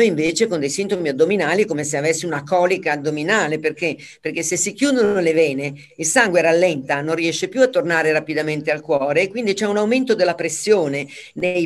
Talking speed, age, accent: 190 wpm, 40-59, native